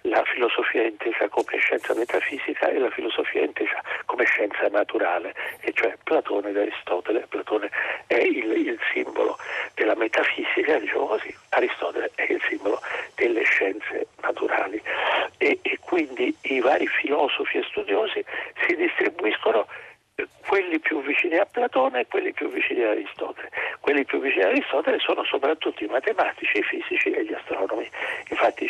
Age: 60-79